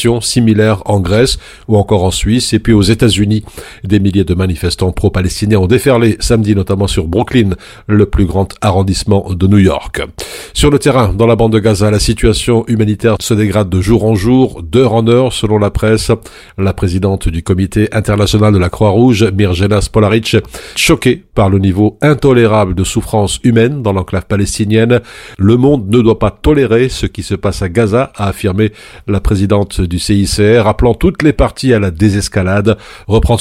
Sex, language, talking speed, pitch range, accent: male, French, 180 wpm, 100-115 Hz, French